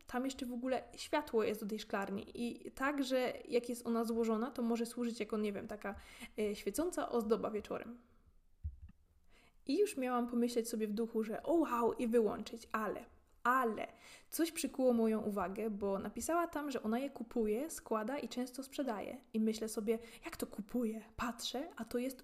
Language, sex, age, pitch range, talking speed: Polish, female, 20-39, 220-255 Hz, 180 wpm